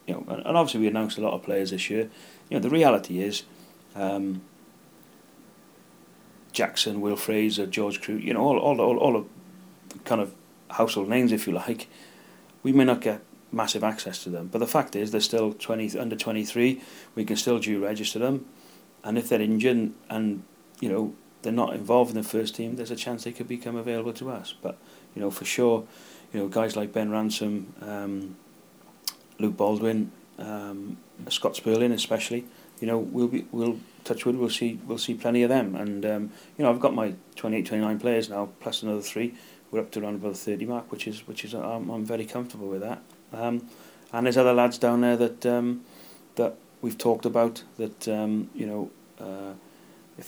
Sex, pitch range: male, 105-120 Hz